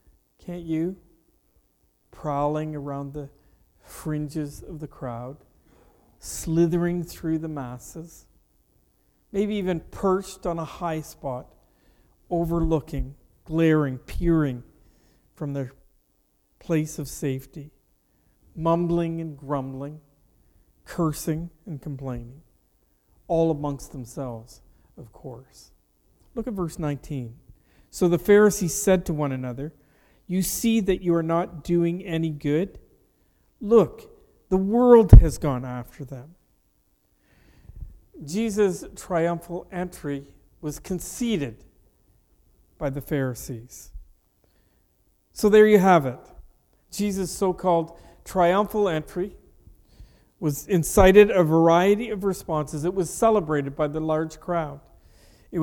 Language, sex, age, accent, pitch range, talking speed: English, male, 50-69, American, 140-180 Hz, 105 wpm